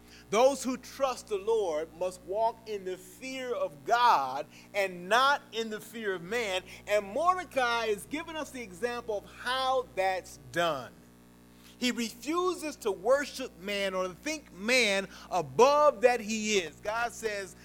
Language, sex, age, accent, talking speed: English, male, 40-59, American, 150 wpm